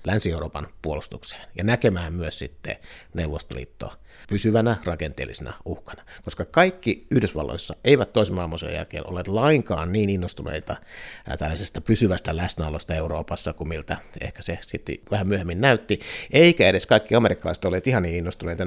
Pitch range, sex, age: 85-105 Hz, male, 60-79